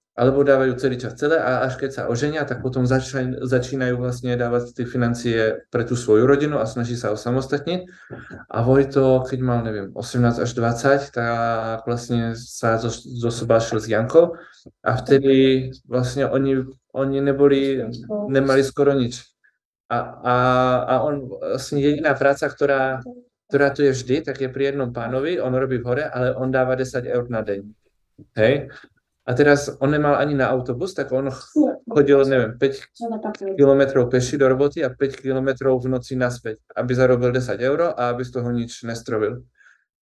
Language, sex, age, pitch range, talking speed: Slovak, male, 20-39, 120-140 Hz, 170 wpm